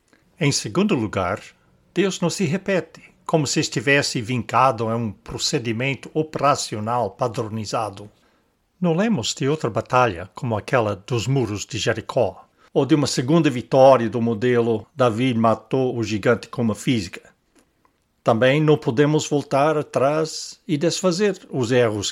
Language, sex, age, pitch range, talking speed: English, male, 60-79, 115-155 Hz, 135 wpm